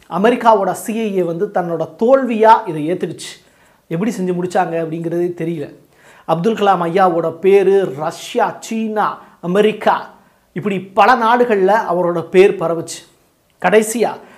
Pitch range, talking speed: 165-210 Hz, 110 wpm